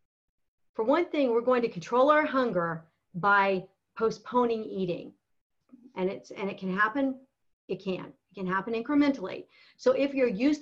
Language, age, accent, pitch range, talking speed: English, 50-69, American, 200-260 Hz, 160 wpm